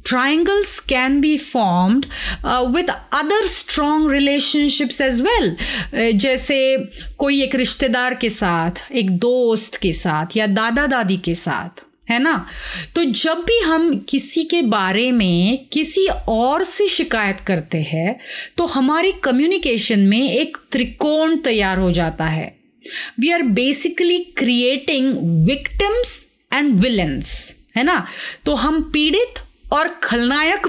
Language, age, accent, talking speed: Hindi, 30-49, native, 125 wpm